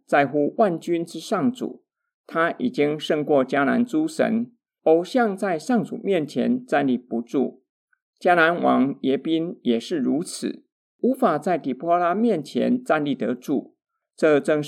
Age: 50-69